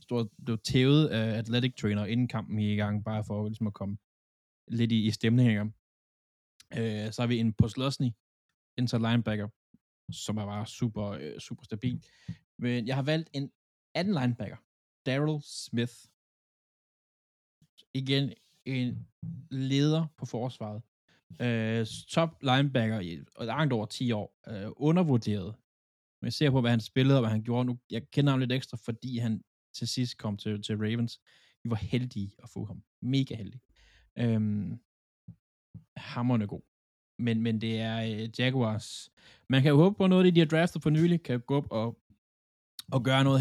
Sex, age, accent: male, 20-39, native